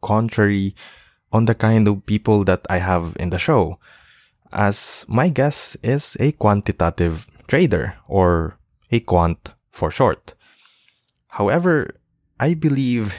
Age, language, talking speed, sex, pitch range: 20-39, English, 125 wpm, male, 95-130 Hz